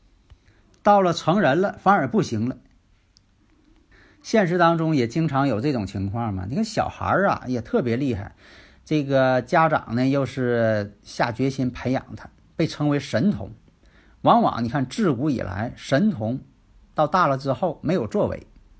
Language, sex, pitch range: Chinese, male, 110-170 Hz